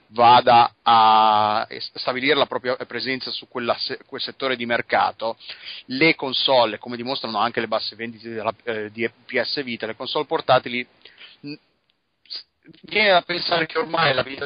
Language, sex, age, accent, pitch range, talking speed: Italian, male, 30-49, native, 110-130 Hz, 150 wpm